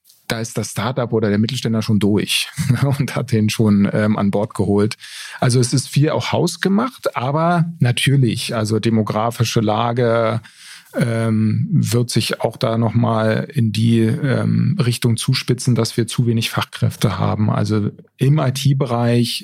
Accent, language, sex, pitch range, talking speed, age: German, German, male, 115-140 Hz, 150 wpm, 40-59